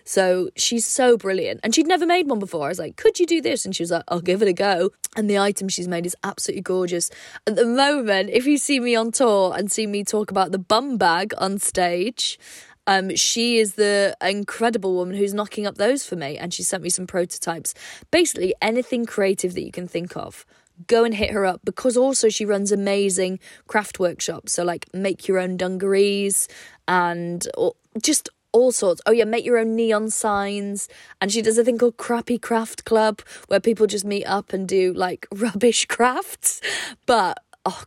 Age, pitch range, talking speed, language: 20-39, 180-230 Hz, 205 wpm, English